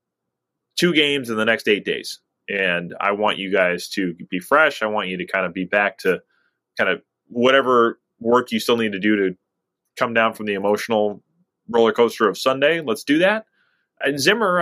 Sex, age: male, 20-39